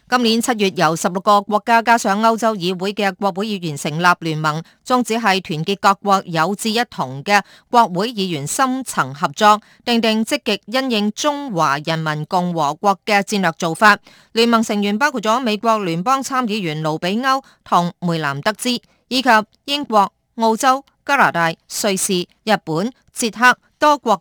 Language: Chinese